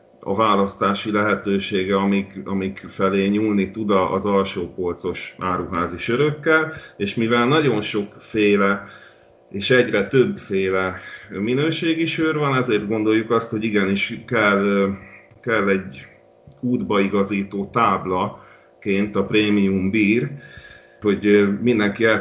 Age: 40-59